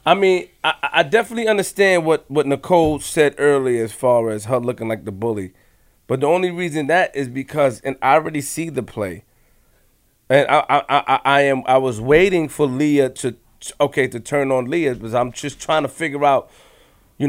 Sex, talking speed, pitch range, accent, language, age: male, 200 wpm, 115-155 Hz, American, English, 30-49